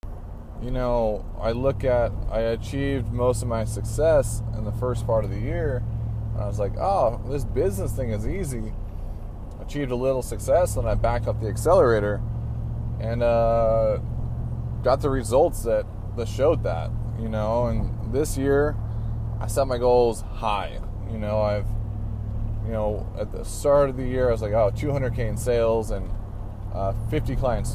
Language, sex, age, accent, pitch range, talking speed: English, male, 20-39, American, 105-125 Hz, 170 wpm